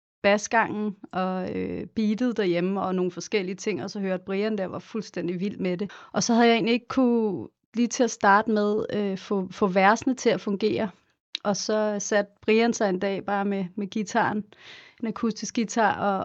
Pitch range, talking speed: 190-215 Hz, 200 wpm